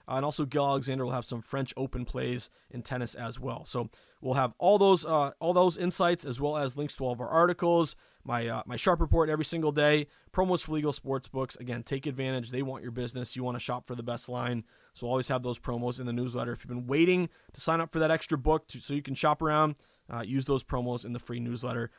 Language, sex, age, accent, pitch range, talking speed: English, male, 20-39, American, 125-155 Hz, 255 wpm